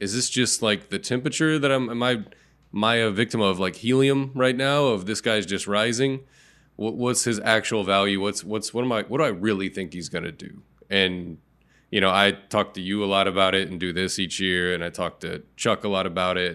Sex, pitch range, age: male, 95-120 Hz, 20-39